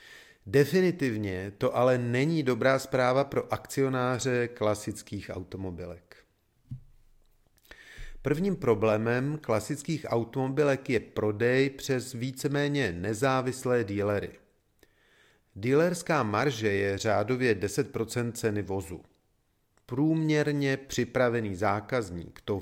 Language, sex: Czech, male